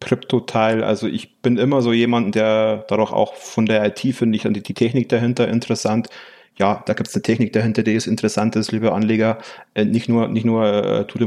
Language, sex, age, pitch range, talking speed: German, male, 30-49, 110-125 Hz, 200 wpm